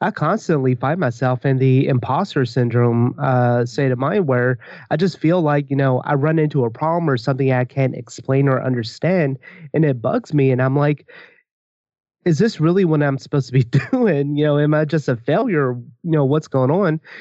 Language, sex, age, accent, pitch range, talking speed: English, male, 30-49, American, 135-160 Hz, 205 wpm